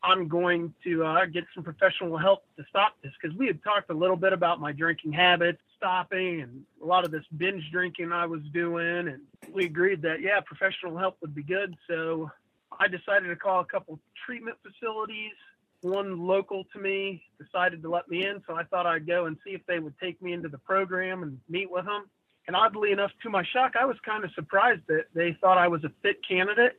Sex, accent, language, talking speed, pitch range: male, American, English, 220 wpm, 165-190 Hz